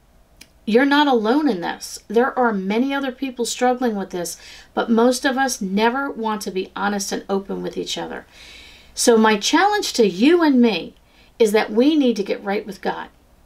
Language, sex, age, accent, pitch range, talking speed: English, female, 50-69, American, 200-250 Hz, 190 wpm